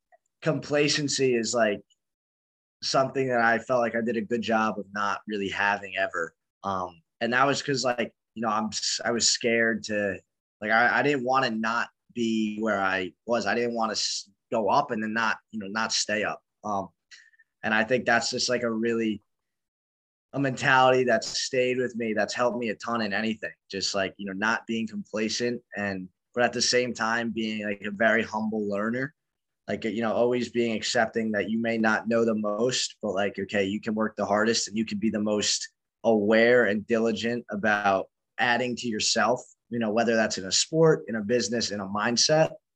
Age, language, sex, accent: 20-39, English, male, American